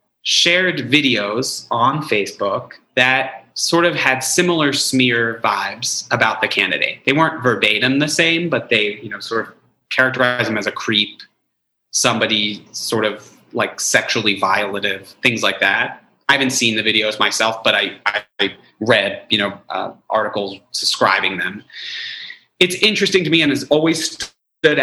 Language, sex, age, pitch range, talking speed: English, male, 30-49, 110-155 Hz, 150 wpm